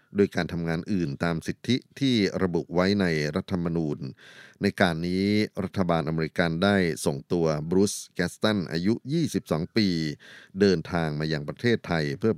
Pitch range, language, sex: 80-100 Hz, Thai, male